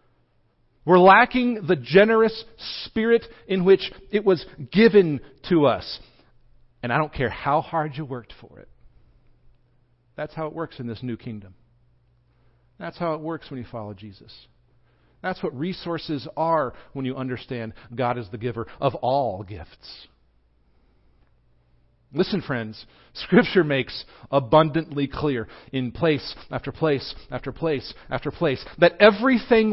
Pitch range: 120-165 Hz